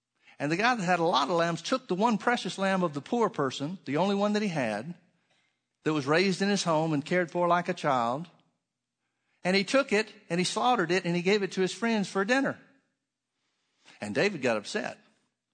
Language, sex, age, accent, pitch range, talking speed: English, male, 50-69, American, 130-185 Hz, 220 wpm